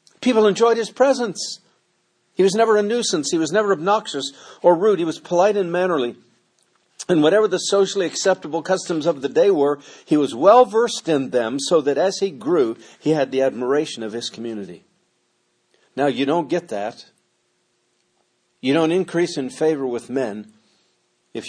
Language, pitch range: English, 140-210 Hz